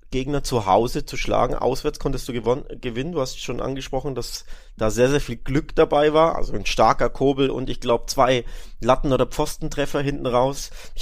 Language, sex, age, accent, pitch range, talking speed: German, male, 30-49, German, 115-145 Hz, 195 wpm